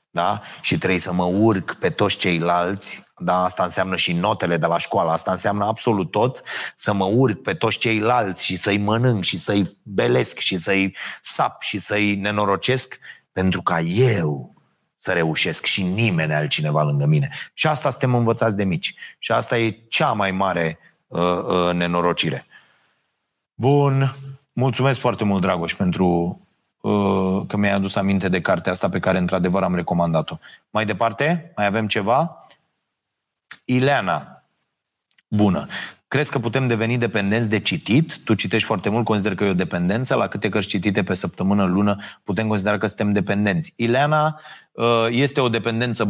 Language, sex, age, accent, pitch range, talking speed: Romanian, male, 30-49, native, 95-125 Hz, 160 wpm